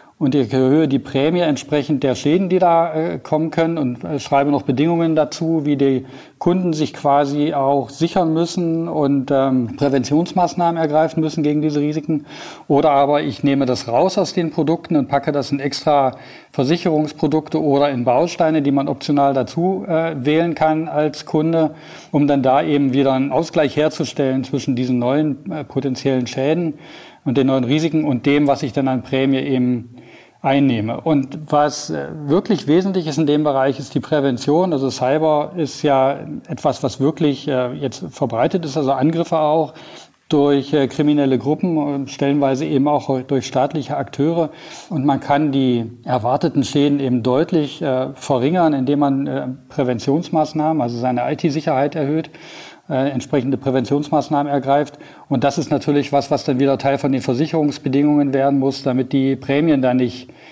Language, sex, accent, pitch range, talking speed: German, male, German, 135-155 Hz, 160 wpm